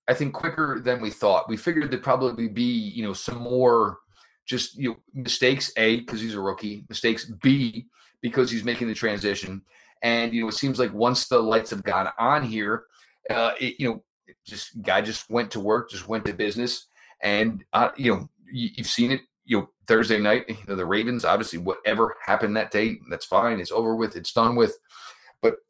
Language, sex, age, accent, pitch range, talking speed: English, male, 30-49, American, 105-135 Hz, 210 wpm